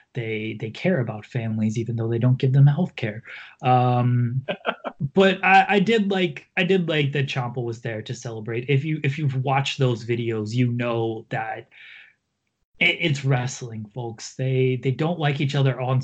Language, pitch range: English, 125-170 Hz